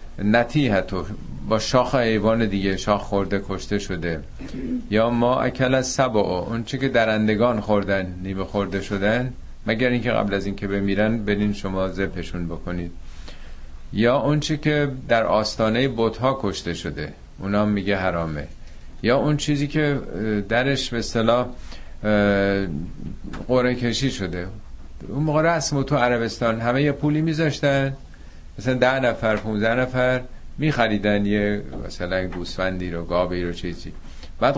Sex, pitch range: male, 85-125 Hz